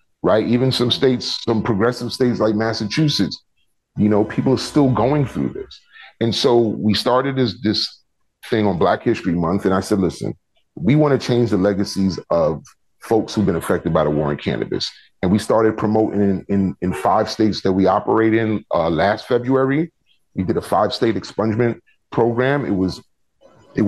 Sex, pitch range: male, 100-120 Hz